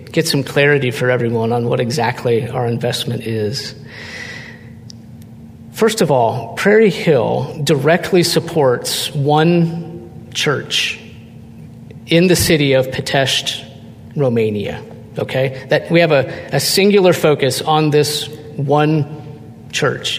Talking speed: 115 wpm